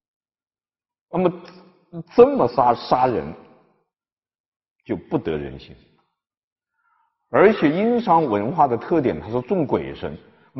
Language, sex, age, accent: Chinese, male, 50-69, native